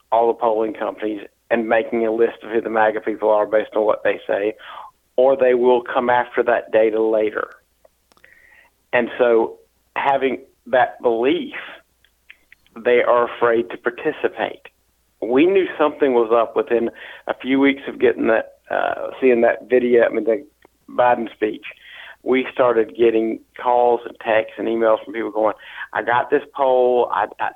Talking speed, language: 165 wpm, English